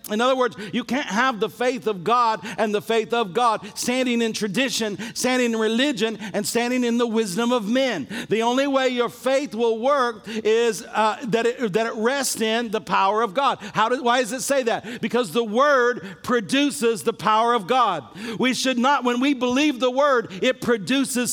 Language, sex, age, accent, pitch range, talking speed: English, male, 50-69, American, 225-265 Hz, 205 wpm